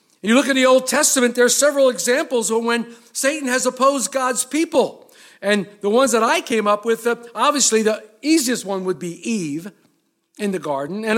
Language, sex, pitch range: English, male, 215-290 Hz